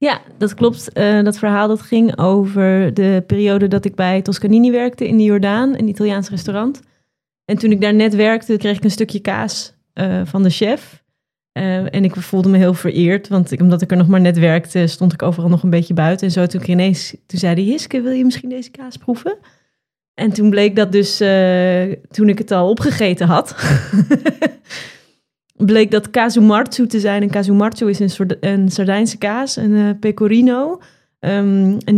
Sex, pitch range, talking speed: female, 190-225 Hz, 195 wpm